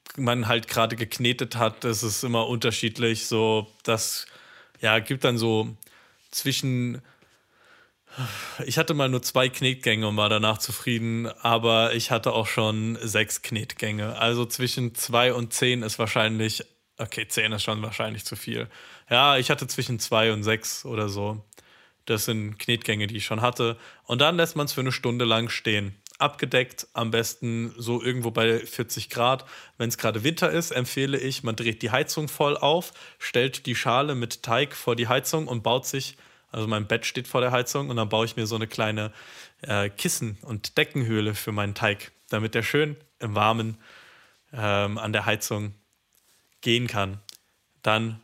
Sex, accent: male, German